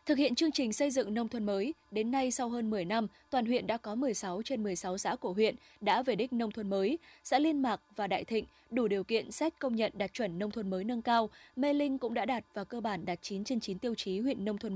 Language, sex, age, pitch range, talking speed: Vietnamese, female, 20-39, 205-260 Hz, 275 wpm